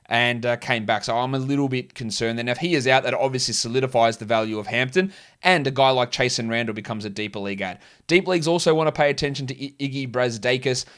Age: 20-39